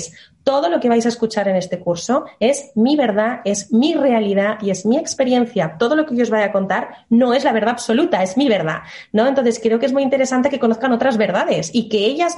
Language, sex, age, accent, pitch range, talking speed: Spanish, female, 20-39, Spanish, 195-245 Hz, 240 wpm